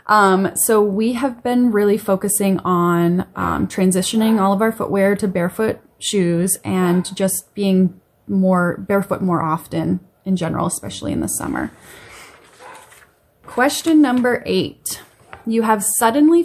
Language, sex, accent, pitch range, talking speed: English, female, American, 180-230 Hz, 130 wpm